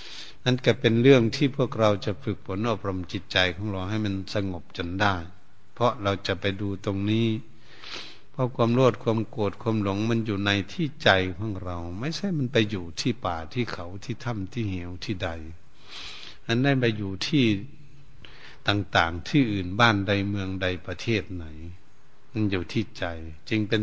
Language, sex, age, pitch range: Thai, male, 70-89, 95-115 Hz